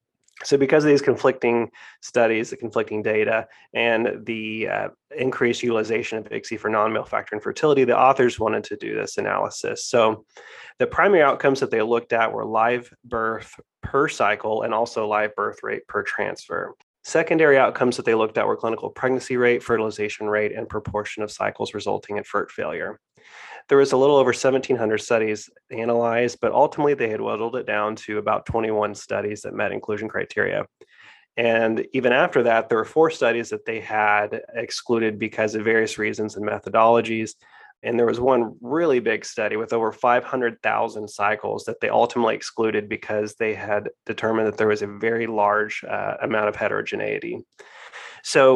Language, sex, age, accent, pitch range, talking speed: English, male, 30-49, American, 110-130 Hz, 170 wpm